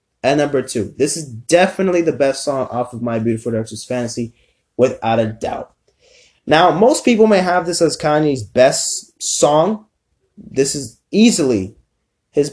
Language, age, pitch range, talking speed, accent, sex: English, 20-39, 120-165 Hz, 155 wpm, American, male